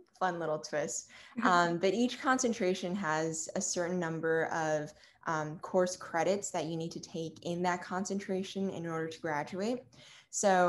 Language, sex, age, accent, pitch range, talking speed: English, female, 20-39, American, 165-195 Hz, 155 wpm